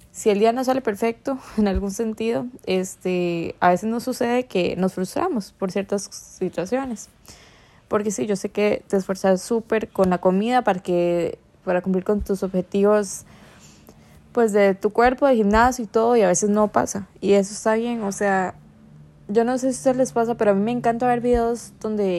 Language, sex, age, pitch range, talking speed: Spanish, female, 10-29, 195-235 Hz, 195 wpm